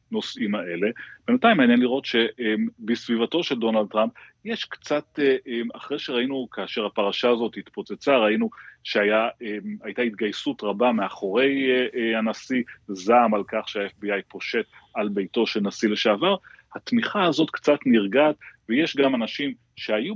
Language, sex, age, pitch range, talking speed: Hebrew, male, 30-49, 105-125 Hz, 120 wpm